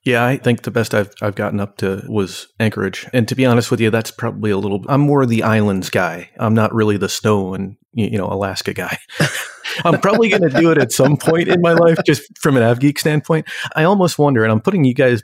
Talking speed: 245 wpm